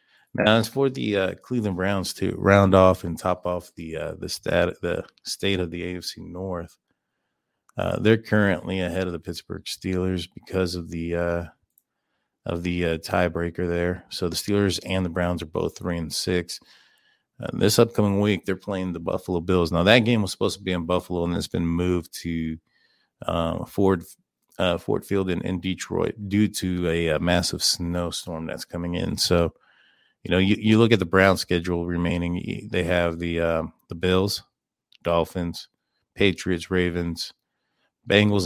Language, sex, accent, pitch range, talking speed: English, male, American, 85-95 Hz, 175 wpm